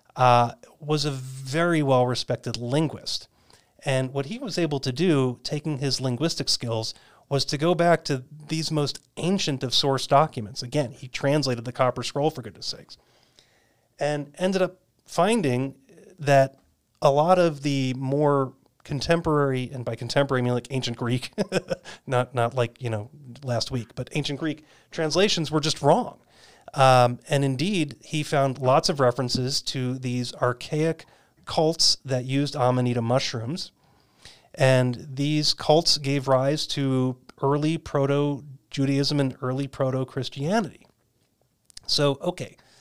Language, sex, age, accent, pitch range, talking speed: English, male, 30-49, American, 125-150 Hz, 140 wpm